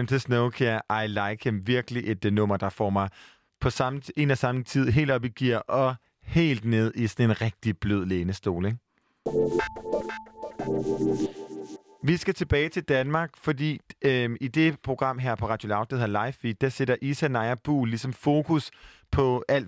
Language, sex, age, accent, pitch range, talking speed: Danish, male, 30-49, native, 110-140 Hz, 175 wpm